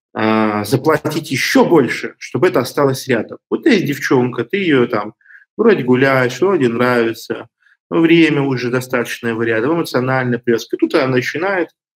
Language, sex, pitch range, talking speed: Russian, male, 125-170 Hz, 145 wpm